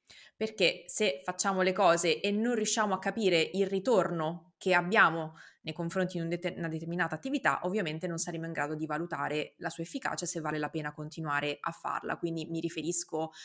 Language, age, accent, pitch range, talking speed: Italian, 20-39, native, 160-185 Hz, 180 wpm